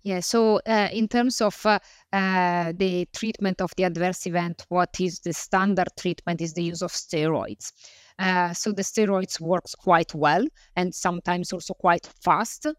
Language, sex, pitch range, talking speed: English, female, 175-195 Hz, 170 wpm